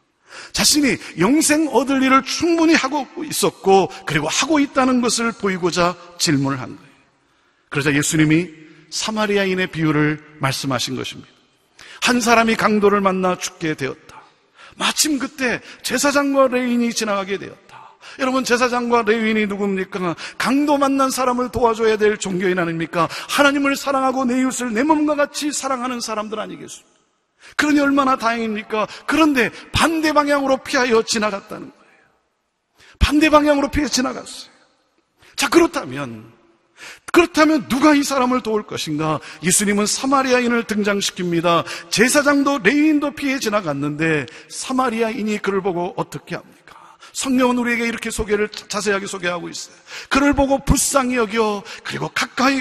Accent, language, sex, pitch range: native, Korean, male, 195-270 Hz